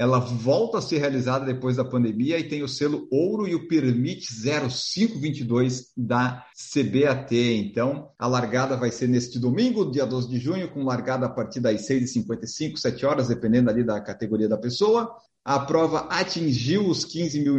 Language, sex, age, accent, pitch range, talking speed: Portuguese, male, 50-69, Brazilian, 125-180 Hz, 170 wpm